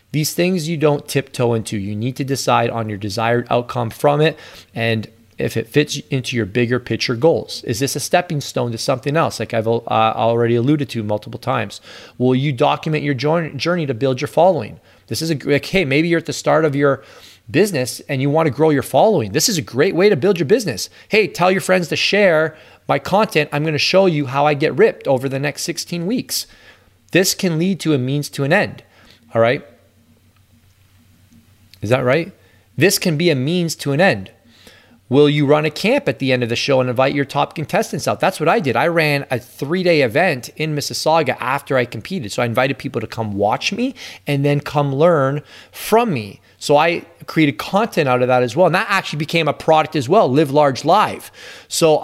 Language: English